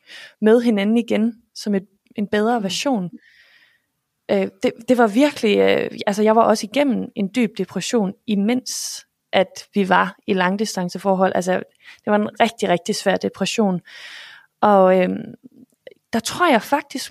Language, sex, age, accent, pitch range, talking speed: Danish, female, 20-39, native, 205-250 Hz, 135 wpm